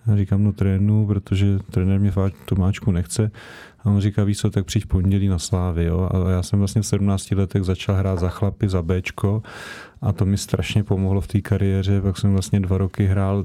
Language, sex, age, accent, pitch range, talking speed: Czech, male, 30-49, native, 95-105 Hz, 220 wpm